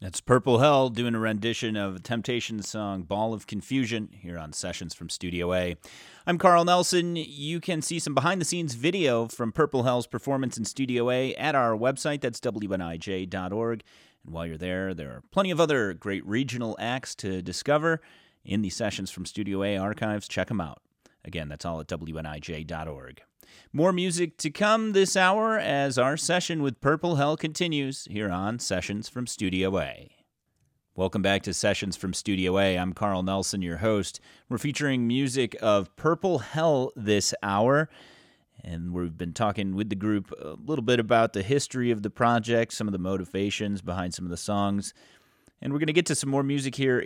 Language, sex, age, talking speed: English, male, 30-49, 180 wpm